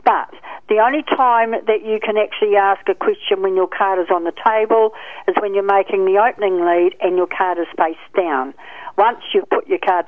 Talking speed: 215 wpm